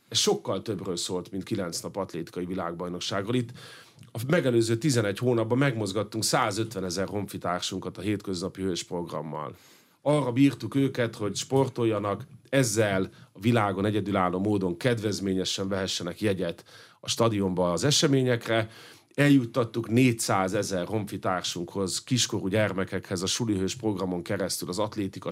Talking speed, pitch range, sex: 120 wpm, 95-120 Hz, male